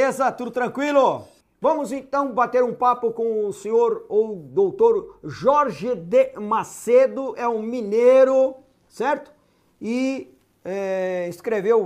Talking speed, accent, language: 105 wpm, Brazilian, Portuguese